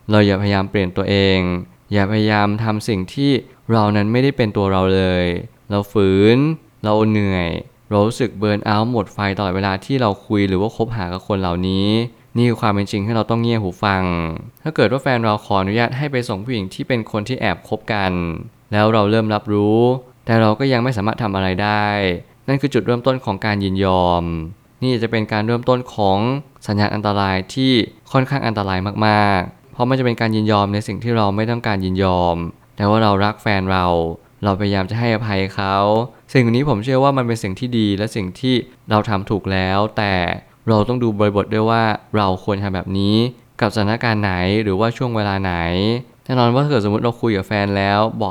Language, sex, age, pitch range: Thai, male, 20-39, 100-120 Hz